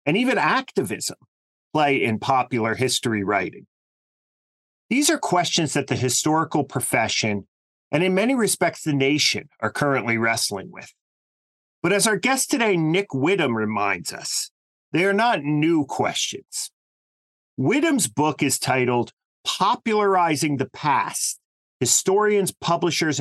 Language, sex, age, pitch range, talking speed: English, male, 40-59, 120-175 Hz, 125 wpm